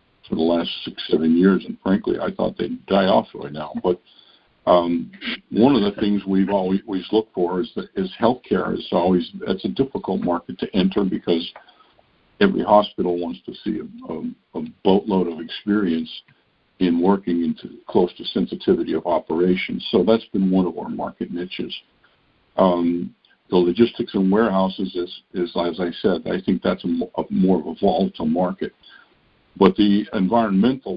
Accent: American